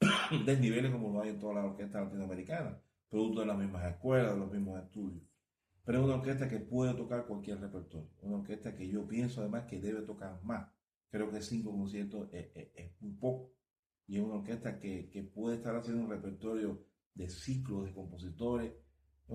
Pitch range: 95-115 Hz